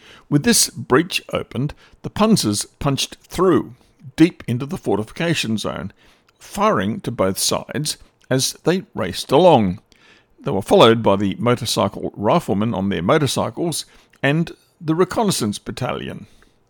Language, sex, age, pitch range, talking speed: English, male, 60-79, 115-150 Hz, 125 wpm